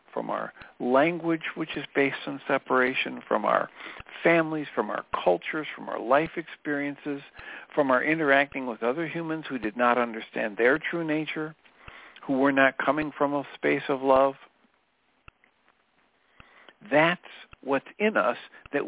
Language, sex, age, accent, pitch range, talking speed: English, male, 60-79, American, 130-170 Hz, 145 wpm